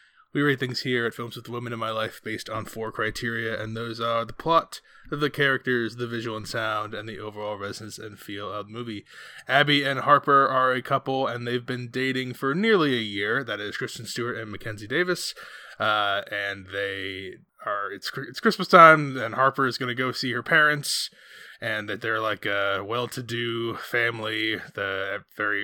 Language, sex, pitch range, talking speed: English, male, 105-130 Hz, 190 wpm